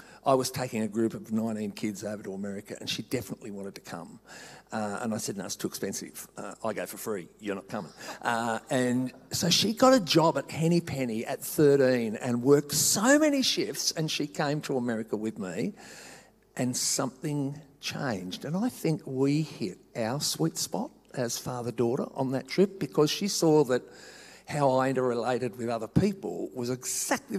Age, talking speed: 50-69, 185 wpm